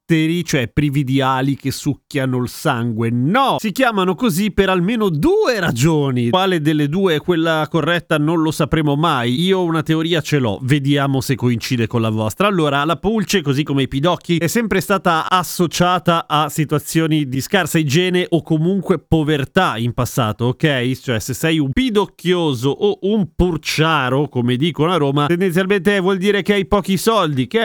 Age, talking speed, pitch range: 30-49, 170 wpm, 135-180 Hz